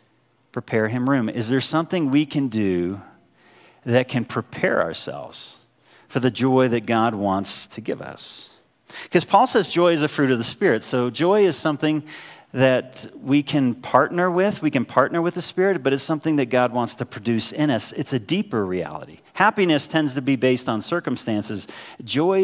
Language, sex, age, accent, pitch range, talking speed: English, male, 40-59, American, 120-150 Hz, 185 wpm